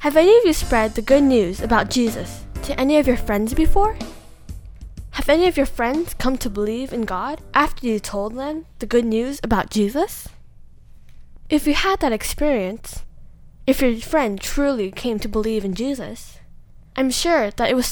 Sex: female